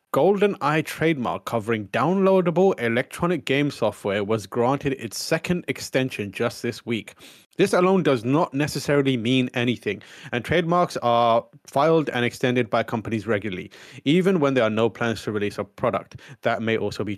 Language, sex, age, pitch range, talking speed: English, male, 30-49, 115-155 Hz, 155 wpm